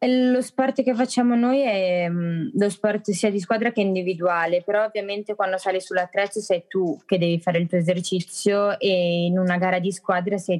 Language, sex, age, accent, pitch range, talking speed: Italian, female, 20-39, native, 170-190 Hz, 200 wpm